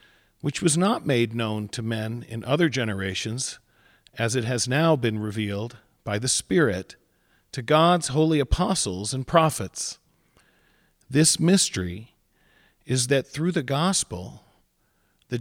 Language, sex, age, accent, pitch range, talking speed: English, male, 50-69, American, 115-160 Hz, 130 wpm